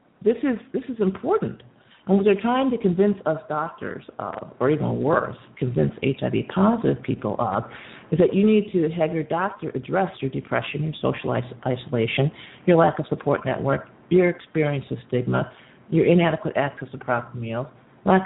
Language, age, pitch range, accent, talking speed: English, 50-69, 140-195 Hz, American, 170 wpm